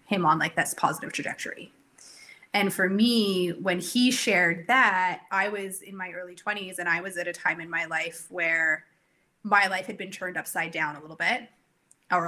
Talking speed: 195 wpm